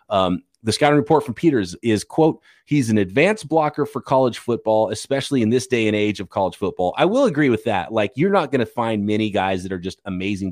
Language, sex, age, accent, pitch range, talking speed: English, male, 30-49, American, 100-140 Hz, 235 wpm